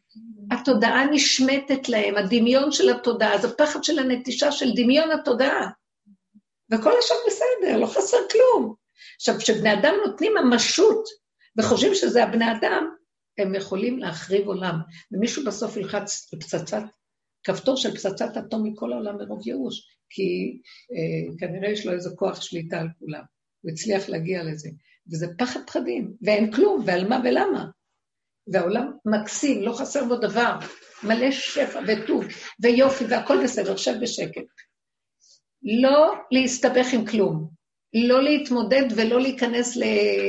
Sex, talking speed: female, 135 wpm